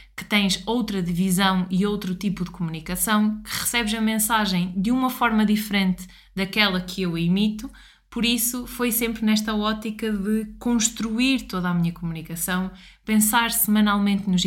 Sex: female